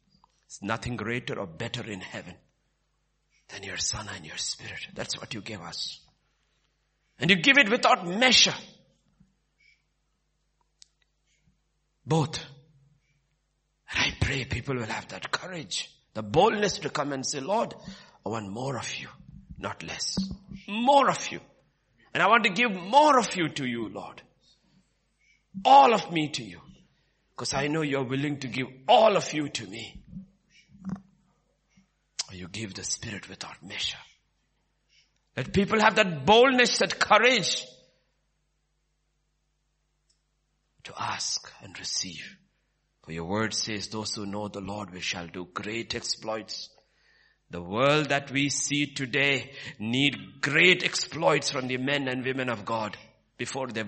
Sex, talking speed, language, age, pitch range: male, 140 wpm, English, 50-69, 115-180 Hz